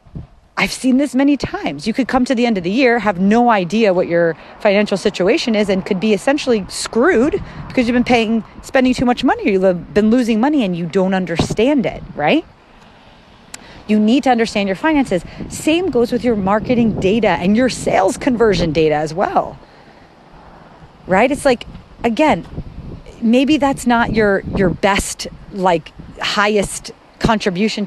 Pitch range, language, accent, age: 185-250 Hz, English, American, 30-49